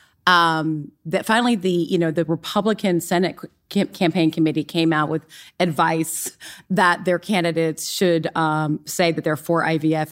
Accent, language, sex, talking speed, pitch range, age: American, English, female, 155 wpm, 170-215 Hz, 30-49